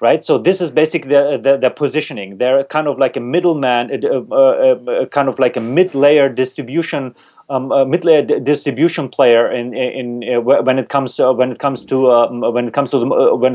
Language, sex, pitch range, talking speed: English, male, 130-155 Hz, 210 wpm